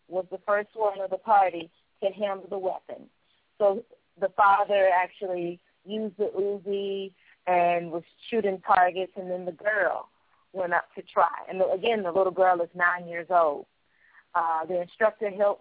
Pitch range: 175-200 Hz